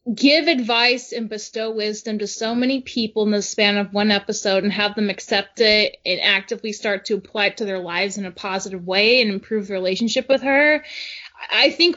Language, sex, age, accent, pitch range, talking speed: English, female, 20-39, American, 205-265 Hz, 205 wpm